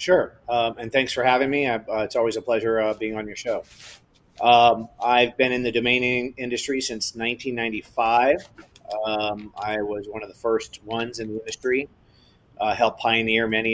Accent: American